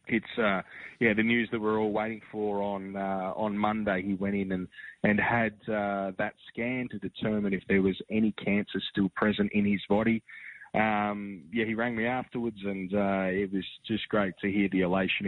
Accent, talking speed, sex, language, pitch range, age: Australian, 205 wpm, male, English, 90-105 Hz, 20-39